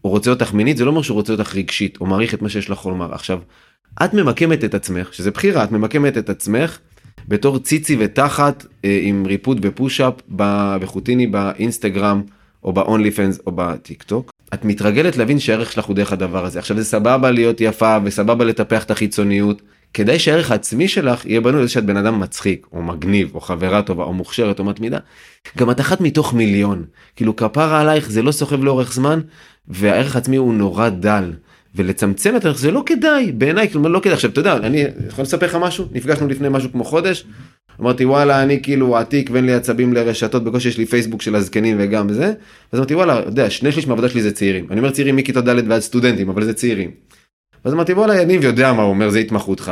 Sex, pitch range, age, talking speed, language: male, 100-140 Hz, 30-49, 185 wpm, Hebrew